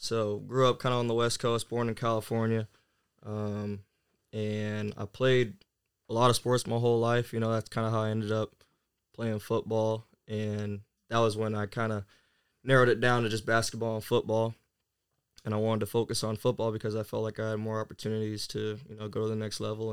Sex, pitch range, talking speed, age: male, 105-115 Hz, 215 wpm, 20-39